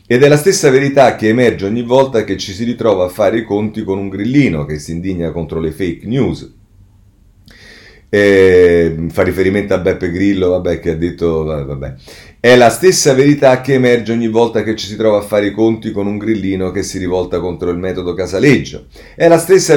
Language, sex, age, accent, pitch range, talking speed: Italian, male, 40-59, native, 95-130 Hz, 205 wpm